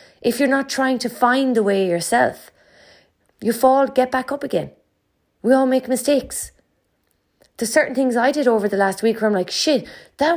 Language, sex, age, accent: English, female, 30-49, Irish